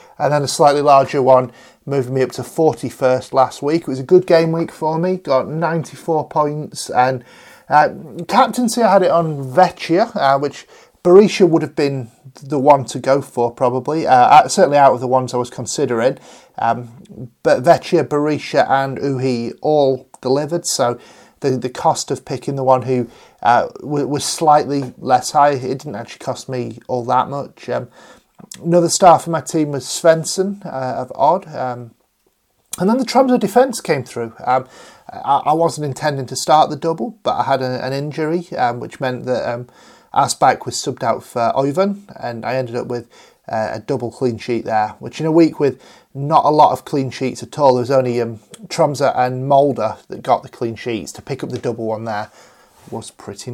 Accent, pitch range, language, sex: British, 125-160 Hz, English, male